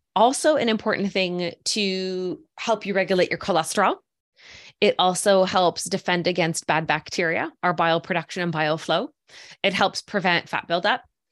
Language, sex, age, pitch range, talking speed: English, female, 20-39, 165-200 Hz, 145 wpm